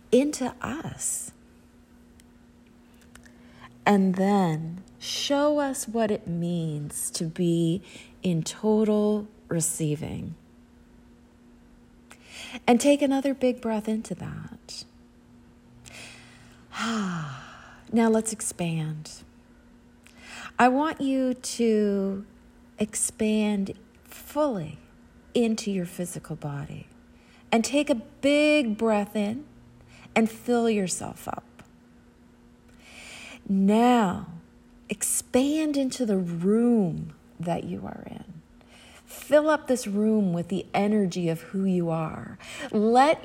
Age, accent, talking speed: 40-59, American, 90 wpm